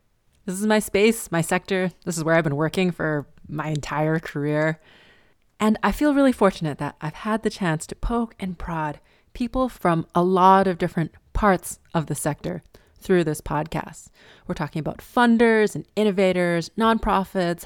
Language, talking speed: English, 170 wpm